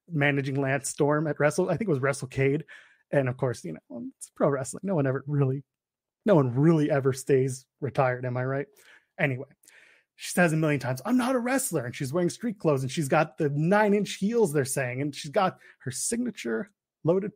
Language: English